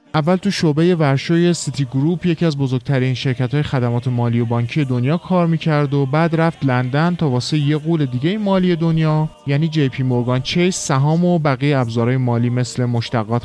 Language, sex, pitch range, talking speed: Persian, male, 130-180 Hz, 185 wpm